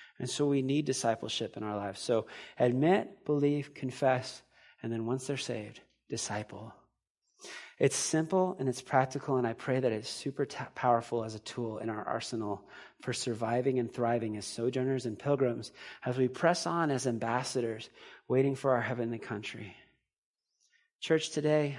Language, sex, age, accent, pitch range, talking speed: English, male, 30-49, American, 125-160 Hz, 155 wpm